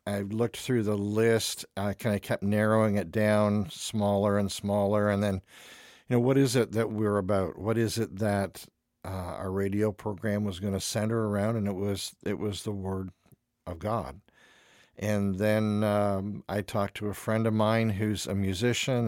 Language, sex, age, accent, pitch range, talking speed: English, male, 50-69, American, 100-110 Hz, 185 wpm